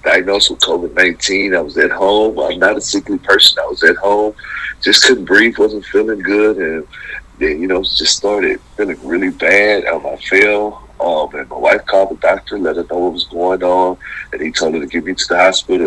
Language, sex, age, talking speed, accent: English, male, 50-69, 220 wpm, American